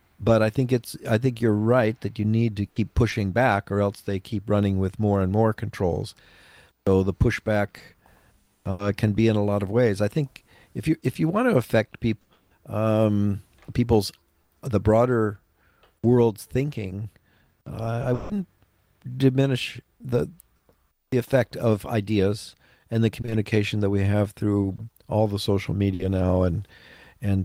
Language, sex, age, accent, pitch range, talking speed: English, male, 50-69, American, 95-120 Hz, 165 wpm